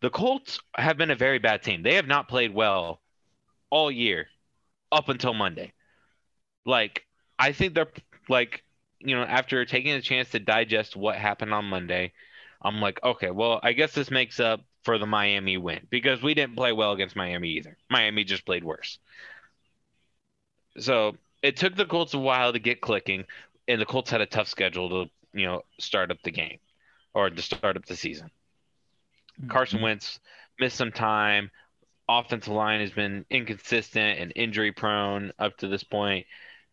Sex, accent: male, American